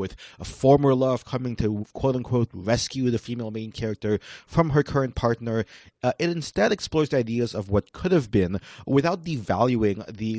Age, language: 30-49, English